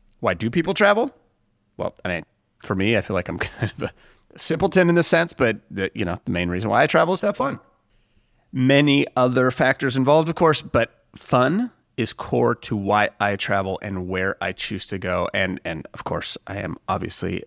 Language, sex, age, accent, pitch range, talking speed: English, male, 30-49, American, 105-135 Hz, 210 wpm